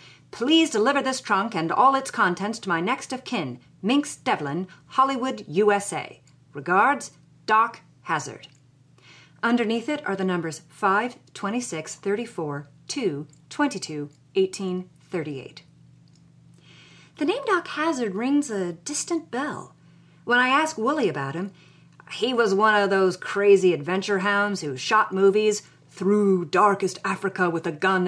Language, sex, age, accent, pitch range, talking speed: English, female, 40-59, American, 165-235 Hz, 135 wpm